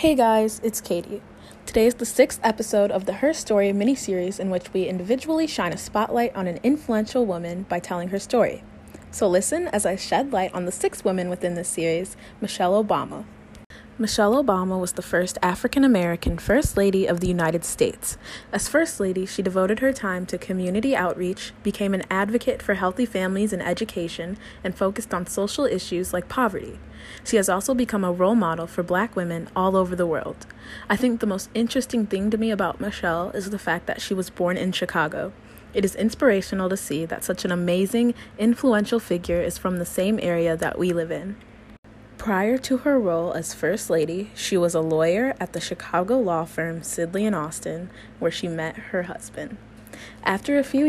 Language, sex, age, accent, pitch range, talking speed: English, female, 20-39, American, 175-225 Hz, 190 wpm